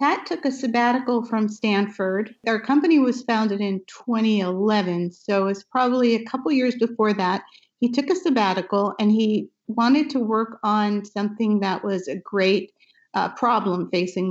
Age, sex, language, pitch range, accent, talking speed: 50-69, female, English, 190-225 Hz, American, 165 wpm